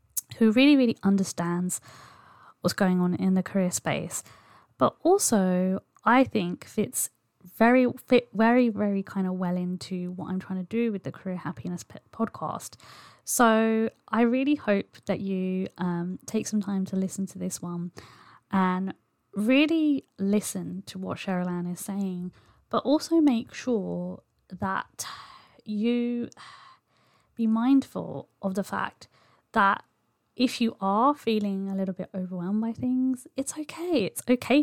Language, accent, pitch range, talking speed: English, British, 185-225 Hz, 145 wpm